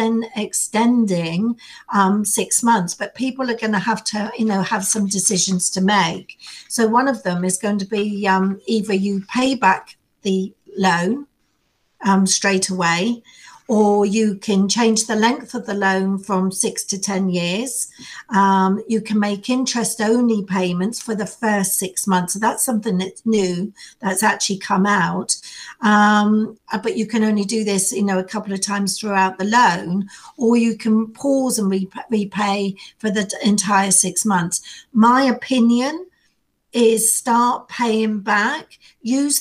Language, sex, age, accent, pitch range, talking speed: English, female, 50-69, British, 195-235 Hz, 160 wpm